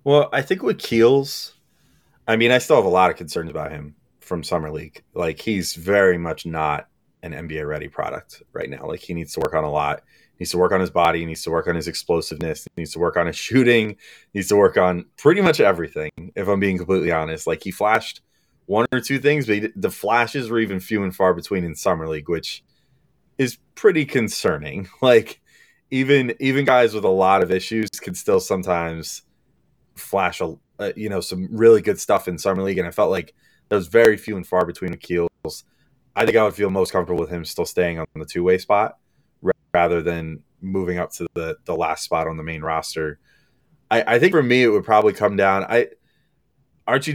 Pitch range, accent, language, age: 90-120 Hz, American, English, 30-49